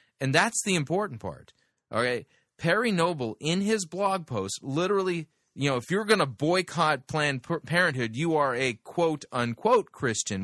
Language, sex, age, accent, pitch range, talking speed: English, male, 30-49, American, 135-180 Hz, 160 wpm